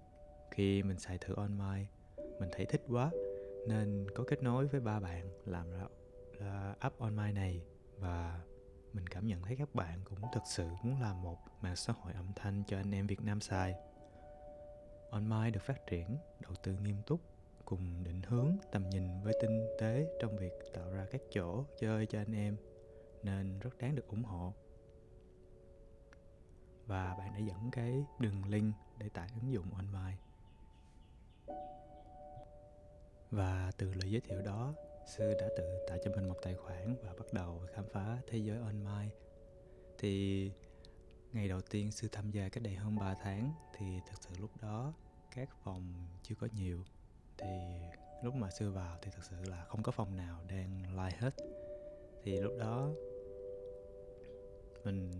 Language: Vietnamese